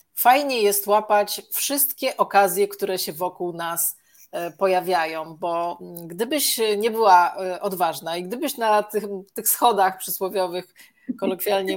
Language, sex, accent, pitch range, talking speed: Polish, female, native, 180-205 Hz, 115 wpm